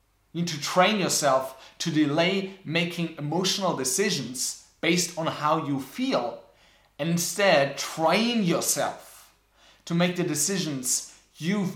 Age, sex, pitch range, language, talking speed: 30-49, male, 140-180 Hz, English, 120 wpm